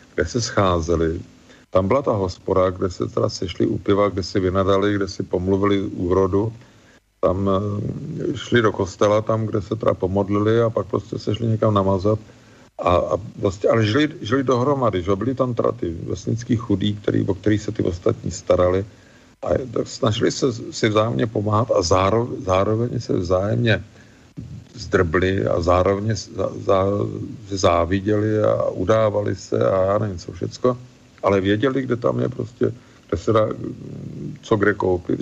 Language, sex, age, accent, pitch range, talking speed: Czech, male, 50-69, native, 95-120 Hz, 160 wpm